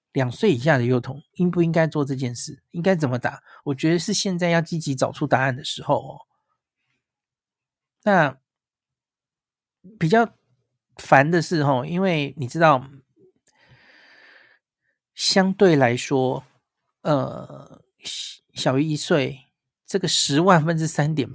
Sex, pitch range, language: male, 135-190 Hz, Chinese